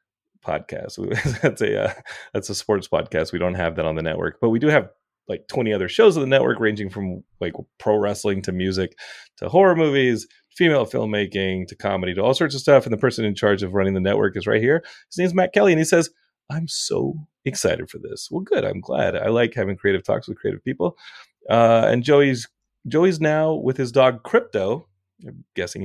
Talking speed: 215 wpm